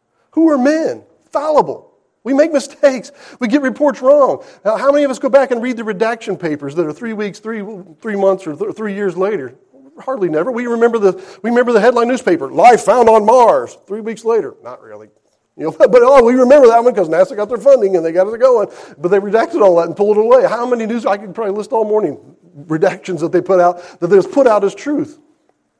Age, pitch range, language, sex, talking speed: 40-59, 180-265 Hz, English, male, 225 wpm